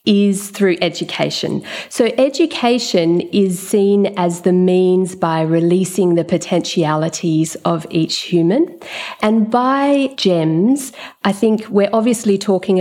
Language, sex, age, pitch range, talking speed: English, female, 40-59, 170-205 Hz, 115 wpm